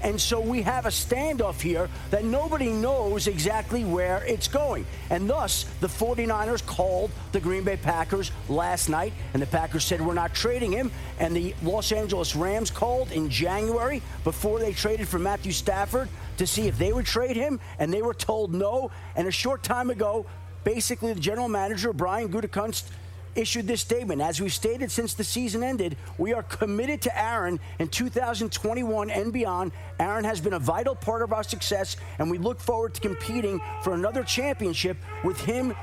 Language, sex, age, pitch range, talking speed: English, male, 40-59, 180-240 Hz, 185 wpm